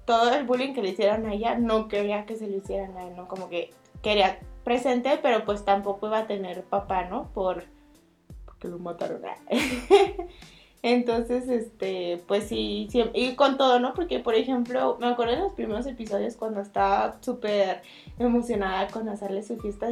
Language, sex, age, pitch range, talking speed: Spanish, female, 20-39, 195-245 Hz, 180 wpm